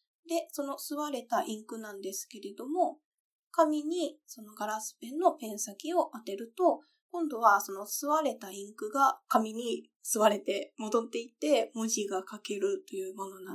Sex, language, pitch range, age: female, Japanese, 205-295 Hz, 20-39